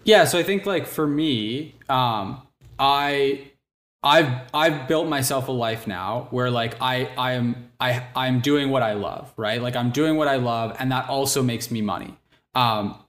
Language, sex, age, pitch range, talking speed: English, male, 10-29, 120-140 Hz, 185 wpm